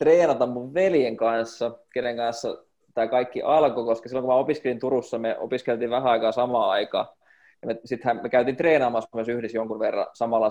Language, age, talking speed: Finnish, 20-39, 185 wpm